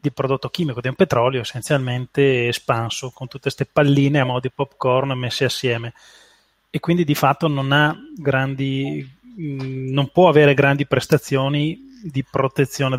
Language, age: Italian, 20-39